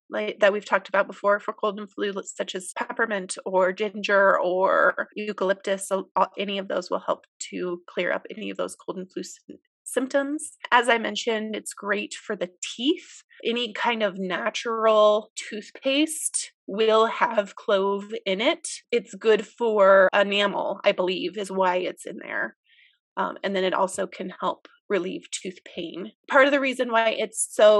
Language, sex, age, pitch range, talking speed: English, female, 30-49, 195-235 Hz, 165 wpm